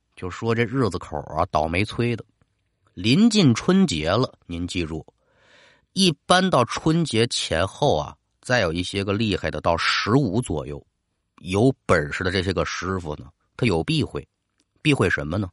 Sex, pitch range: male, 85-145 Hz